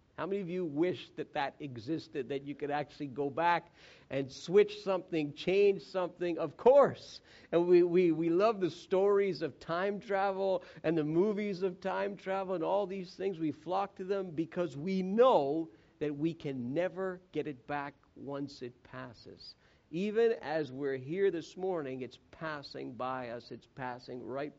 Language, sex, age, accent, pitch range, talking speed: English, male, 50-69, American, 145-180 Hz, 175 wpm